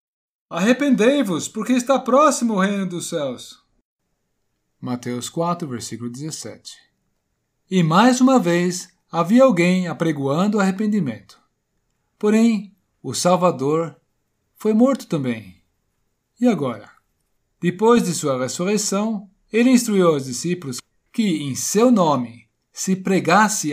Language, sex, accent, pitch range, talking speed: Portuguese, male, Brazilian, 135-210 Hz, 105 wpm